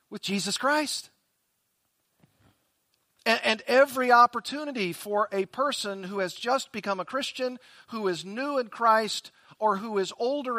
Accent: American